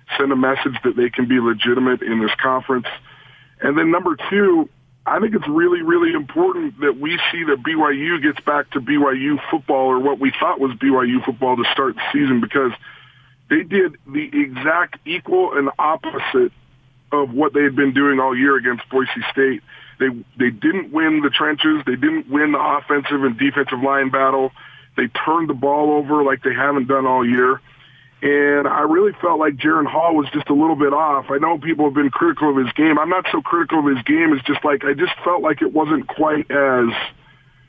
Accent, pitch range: American, 130-155 Hz